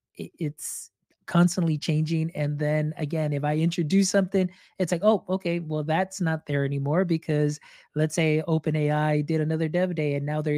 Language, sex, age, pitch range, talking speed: English, male, 20-39, 145-165 Hz, 175 wpm